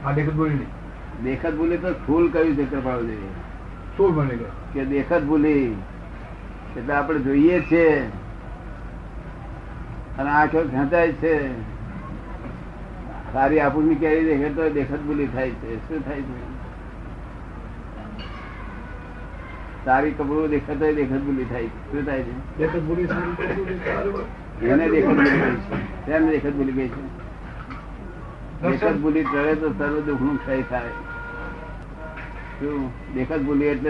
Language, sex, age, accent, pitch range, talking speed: Gujarati, male, 60-79, native, 115-155 Hz, 35 wpm